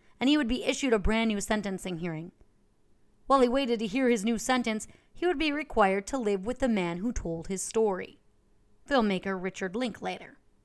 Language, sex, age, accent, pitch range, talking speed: English, female, 30-49, American, 185-240 Hz, 190 wpm